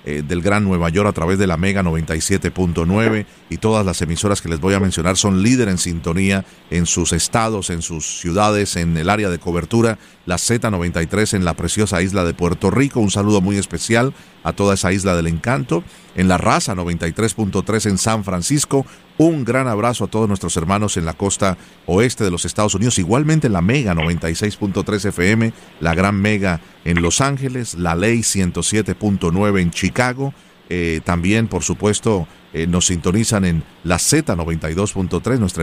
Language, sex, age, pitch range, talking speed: Spanish, male, 40-59, 85-110 Hz, 170 wpm